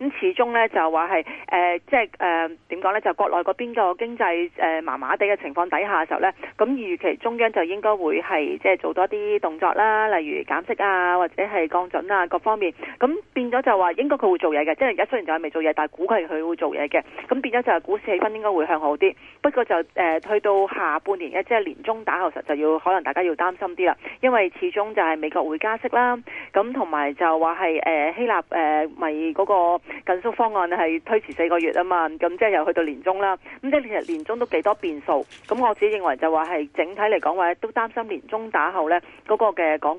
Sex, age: female, 30-49